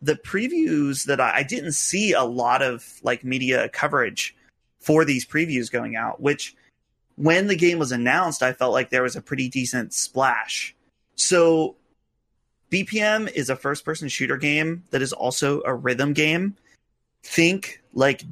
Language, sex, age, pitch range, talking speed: English, male, 30-49, 125-155 Hz, 160 wpm